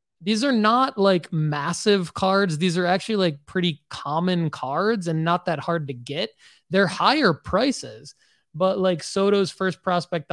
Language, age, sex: English, 20-39, male